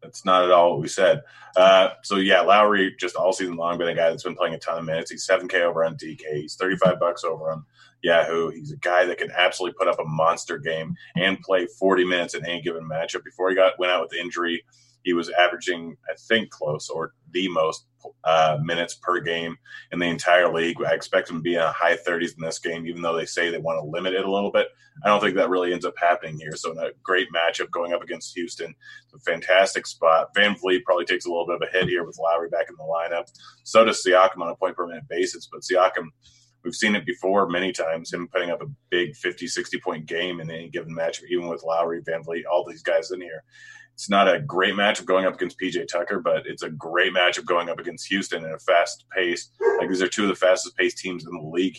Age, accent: 30-49, American